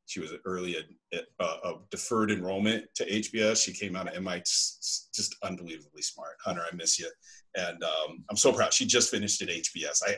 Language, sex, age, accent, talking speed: English, male, 40-59, American, 200 wpm